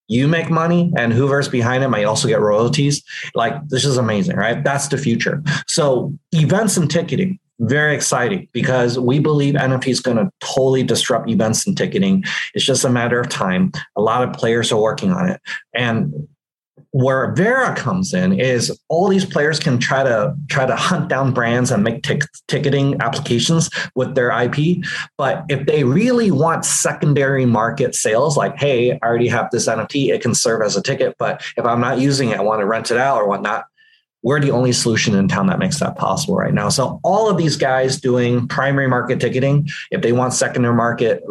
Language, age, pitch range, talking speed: English, 30-49, 120-160 Hz, 195 wpm